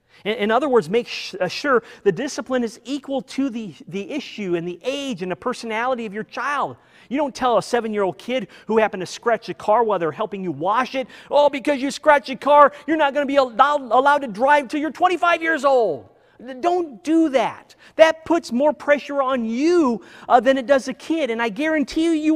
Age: 40-59